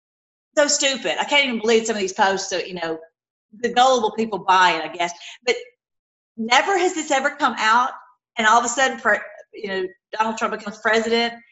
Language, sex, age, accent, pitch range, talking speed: English, female, 40-59, American, 185-265 Hz, 200 wpm